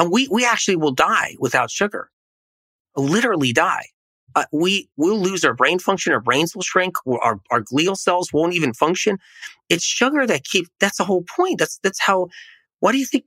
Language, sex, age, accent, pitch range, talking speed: English, male, 30-49, American, 135-215 Hz, 200 wpm